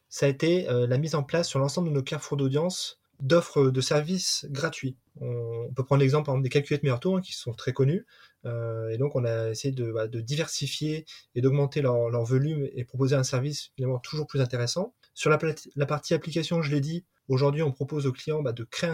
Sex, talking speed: male, 200 wpm